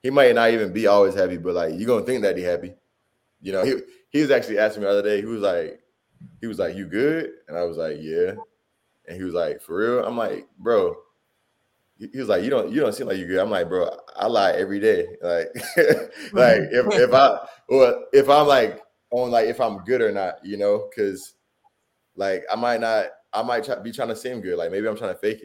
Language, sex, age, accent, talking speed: English, male, 20-39, American, 250 wpm